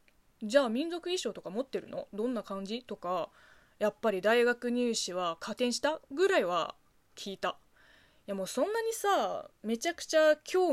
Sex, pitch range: female, 205-305 Hz